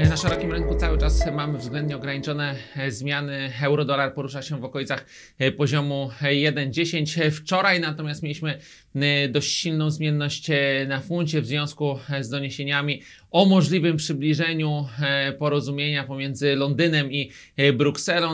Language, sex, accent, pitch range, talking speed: Polish, male, native, 140-155 Hz, 120 wpm